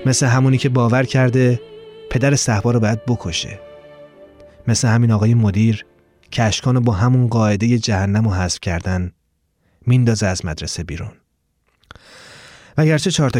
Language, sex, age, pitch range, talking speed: Persian, male, 30-49, 100-140 Hz, 130 wpm